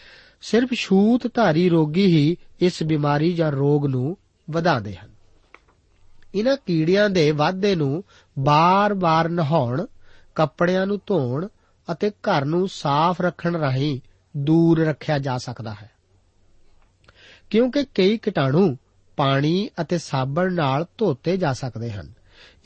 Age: 40-59